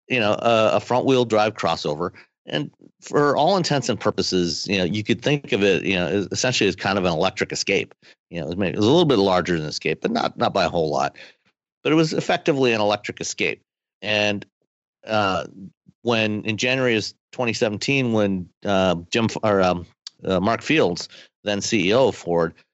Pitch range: 90-115 Hz